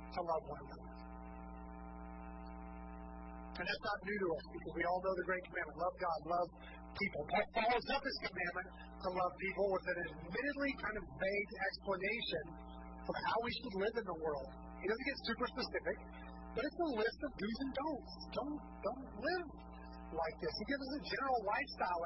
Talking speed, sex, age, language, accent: 185 wpm, male, 30-49, English, American